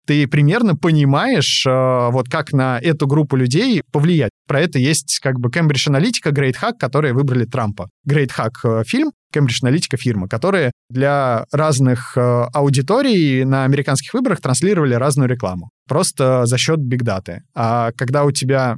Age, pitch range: 20-39, 125-150 Hz